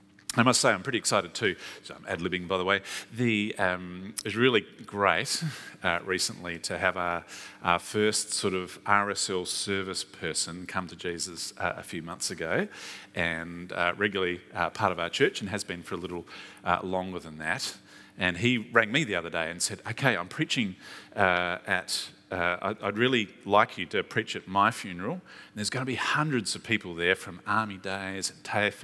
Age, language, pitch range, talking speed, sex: 40-59, English, 95-125 Hz, 195 wpm, male